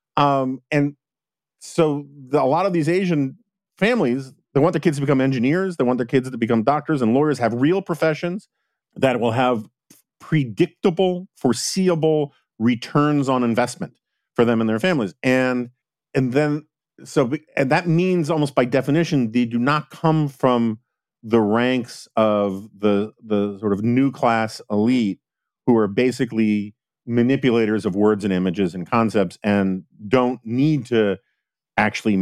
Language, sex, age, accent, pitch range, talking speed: English, male, 40-59, American, 115-145 Hz, 155 wpm